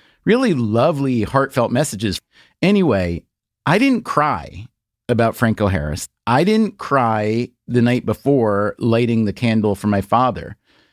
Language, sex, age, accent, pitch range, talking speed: English, male, 40-59, American, 100-130 Hz, 125 wpm